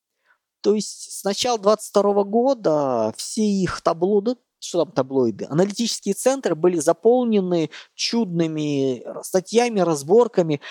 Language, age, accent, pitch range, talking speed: Russian, 20-39, native, 150-215 Hz, 105 wpm